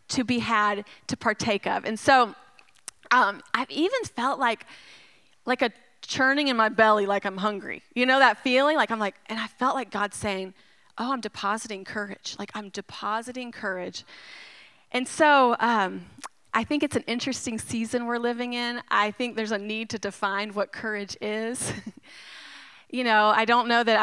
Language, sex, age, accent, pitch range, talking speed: English, female, 30-49, American, 215-265 Hz, 175 wpm